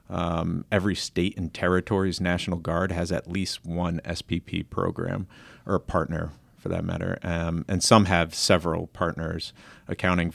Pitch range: 85-100 Hz